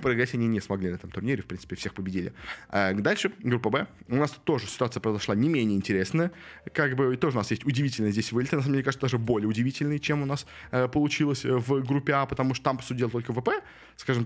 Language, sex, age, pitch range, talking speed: Russian, male, 20-39, 105-140 Hz, 225 wpm